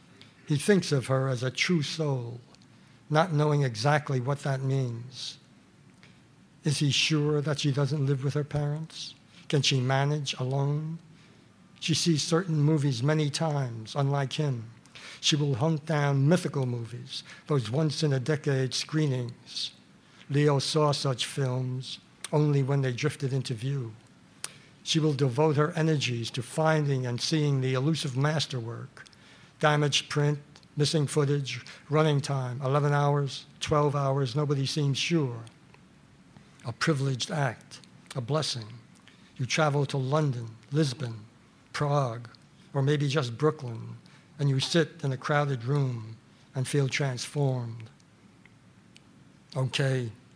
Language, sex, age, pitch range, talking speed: English, male, 60-79, 130-150 Hz, 130 wpm